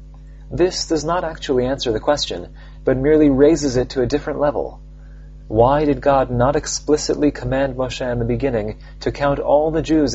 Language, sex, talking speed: English, male, 175 wpm